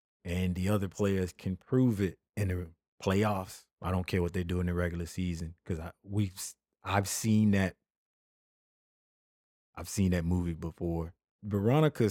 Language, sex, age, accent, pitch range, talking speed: English, male, 30-49, American, 85-100 Hz, 160 wpm